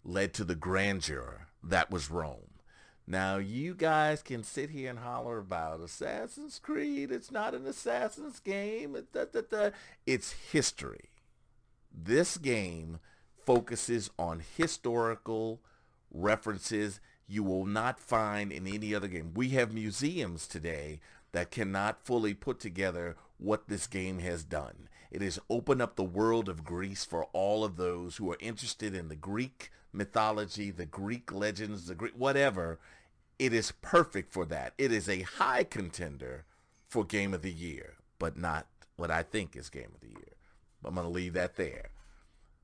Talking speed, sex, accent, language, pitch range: 150 wpm, male, American, English, 90-120 Hz